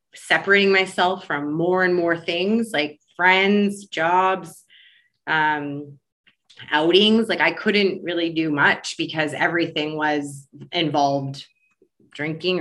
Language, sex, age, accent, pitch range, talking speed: English, female, 20-39, American, 155-185 Hz, 110 wpm